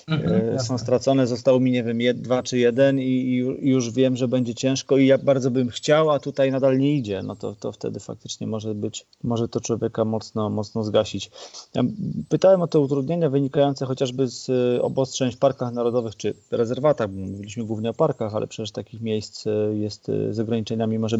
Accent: native